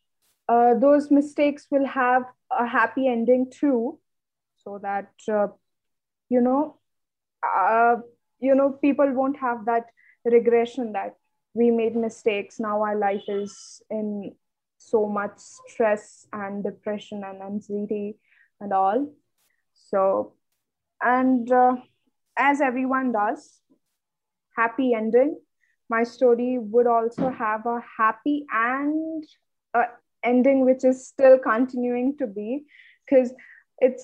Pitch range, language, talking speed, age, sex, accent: 230-275 Hz, English, 115 wpm, 20-39, female, Indian